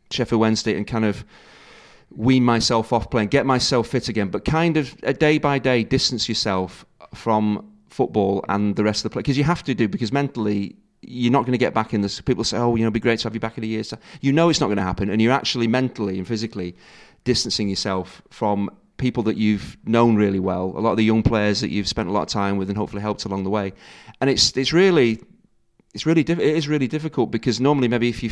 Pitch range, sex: 105-120 Hz, male